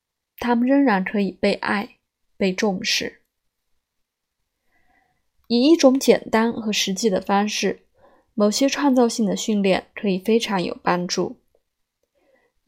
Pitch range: 195-240 Hz